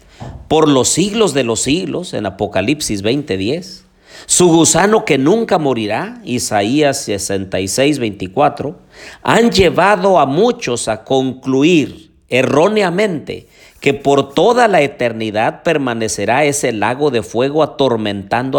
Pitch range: 115-170 Hz